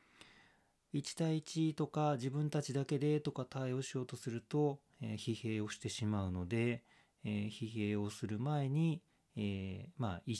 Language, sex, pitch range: Japanese, male, 100-140 Hz